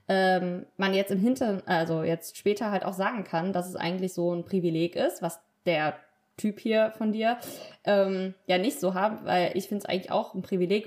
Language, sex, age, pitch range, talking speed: German, female, 20-39, 185-220 Hz, 205 wpm